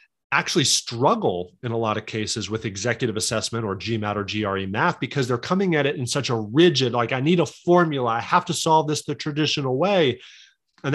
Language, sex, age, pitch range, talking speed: English, male, 30-49, 115-150 Hz, 210 wpm